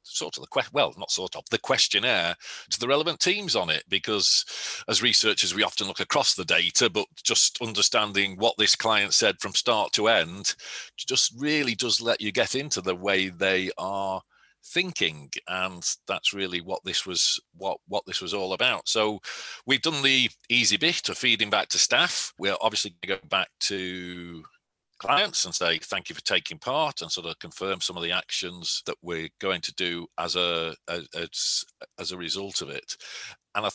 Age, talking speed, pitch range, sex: 40-59, 195 wpm, 90-120 Hz, male